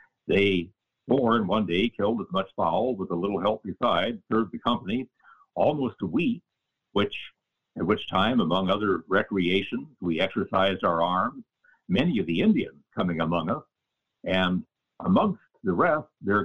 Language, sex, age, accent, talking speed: English, male, 60-79, American, 155 wpm